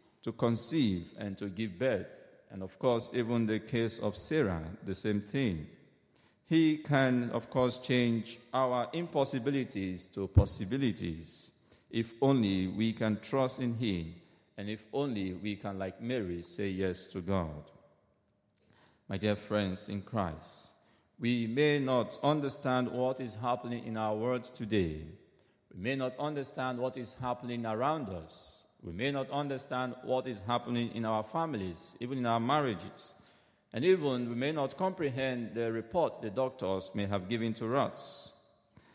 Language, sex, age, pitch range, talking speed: English, male, 50-69, 100-130 Hz, 150 wpm